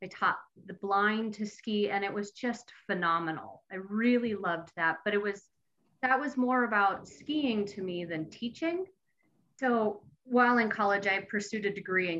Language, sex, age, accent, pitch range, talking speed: English, female, 30-49, American, 180-215 Hz, 175 wpm